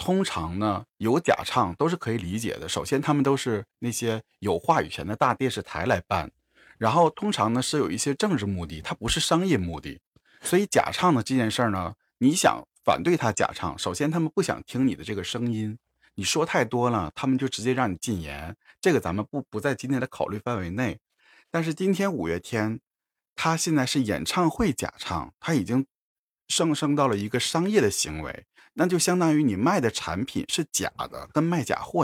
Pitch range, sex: 100-145 Hz, male